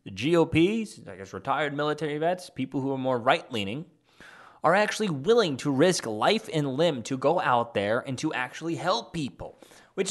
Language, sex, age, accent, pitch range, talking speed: English, male, 20-39, American, 120-175 Hz, 180 wpm